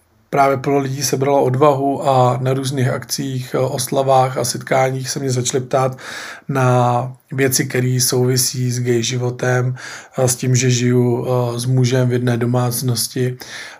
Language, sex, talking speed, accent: Czech, male, 150 wpm, native